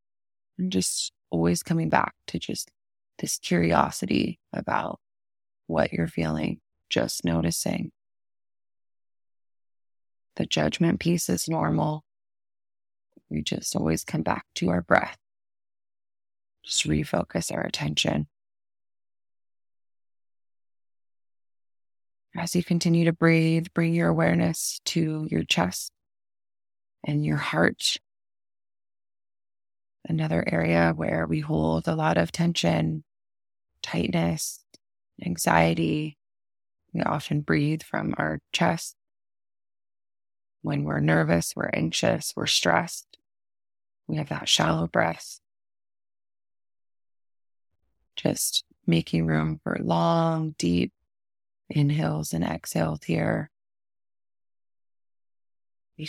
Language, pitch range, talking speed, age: English, 80-100 Hz, 90 wpm, 30-49